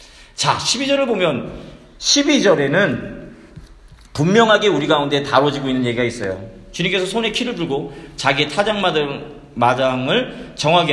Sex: male